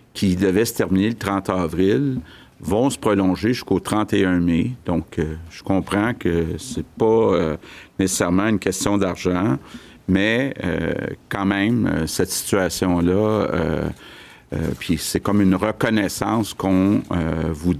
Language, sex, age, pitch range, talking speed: French, male, 50-69, 90-110 Hz, 120 wpm